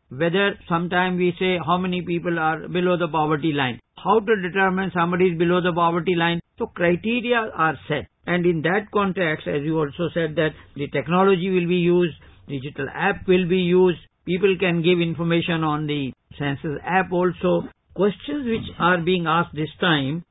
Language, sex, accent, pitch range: English, male, Indian, 165-190 Hz